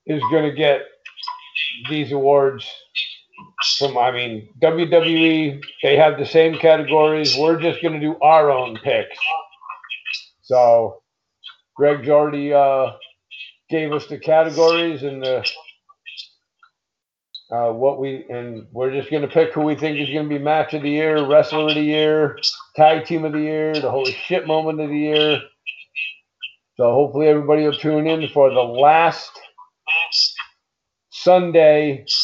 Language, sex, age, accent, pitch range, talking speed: English, male, 50-69, American, 135-160 Hz, 145 wpm